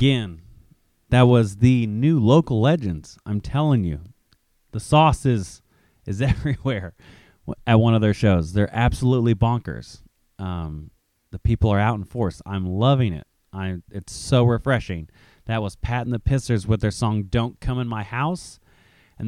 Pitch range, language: 105-130 Hz, English